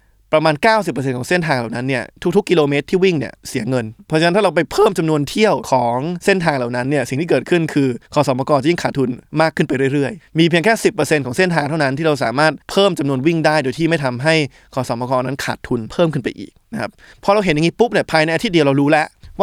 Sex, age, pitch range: male, 20-39, 130-170 Hz